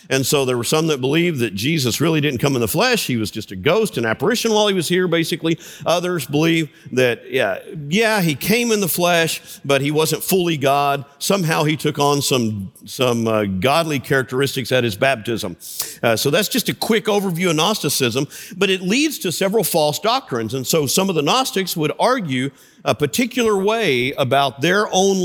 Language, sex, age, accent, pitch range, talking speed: English, male, 50-69, American, 135-195 Hz, 200 wpm